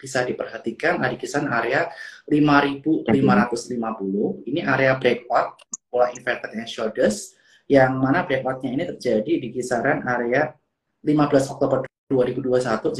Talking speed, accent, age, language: 100 wpm, native, 30-49, Indonesian